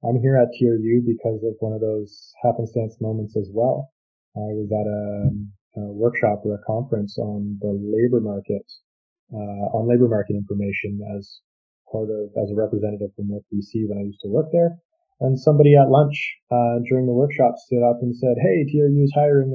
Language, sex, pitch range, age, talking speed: English, male, 105-130 Hz, 20-39, 190 wpm